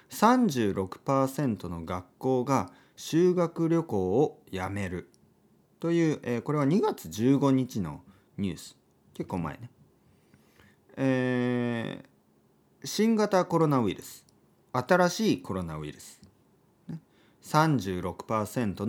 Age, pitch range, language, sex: 40-59, 90-150 Hz, Japanese, male